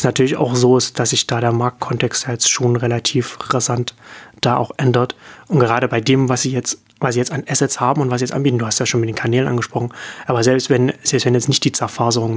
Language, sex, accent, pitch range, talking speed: German, male, German, 120-135 Hz, 245 wpm